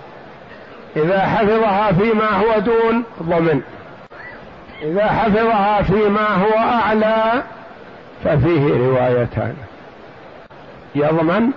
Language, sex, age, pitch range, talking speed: Arabic, male, 60-79, 160-205 Hz, 75 wpm